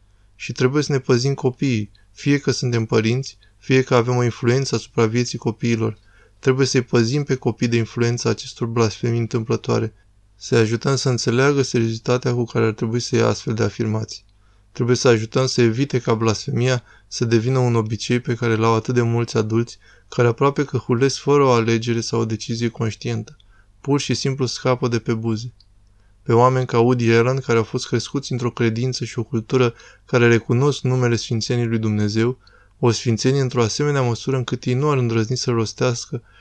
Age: 20-39